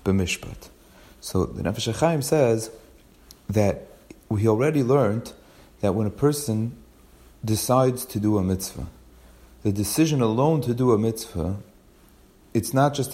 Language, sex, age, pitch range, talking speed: English, male, 40-59, 100-130 Hz, 130 wpm